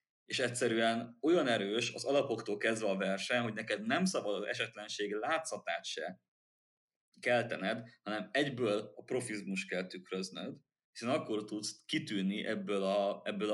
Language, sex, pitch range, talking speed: Hungarian, male, 100-130 Hz, 135 wpm